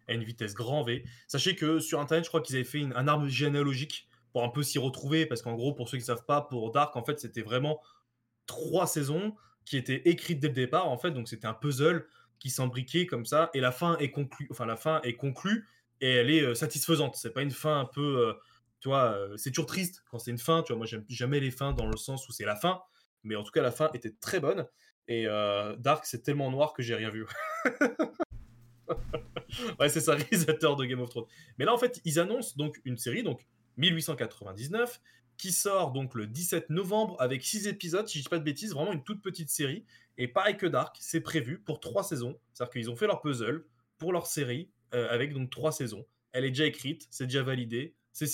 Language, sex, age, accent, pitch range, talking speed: French, male, 20-39, French, 120-165 Hz, 235 wpm